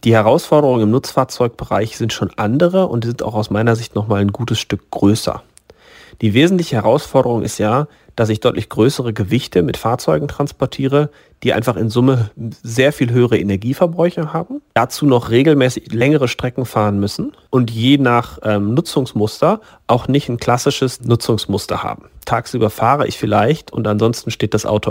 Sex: male